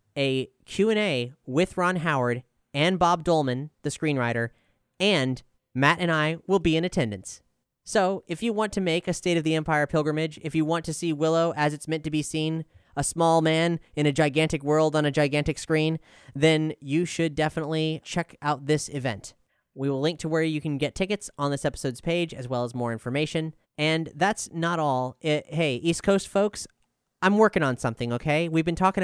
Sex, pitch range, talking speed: male, 140-175 Hz, 200 wpm